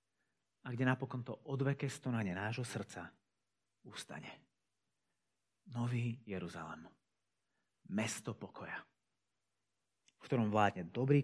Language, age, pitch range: Slovak, 40-59, 100-130 Hz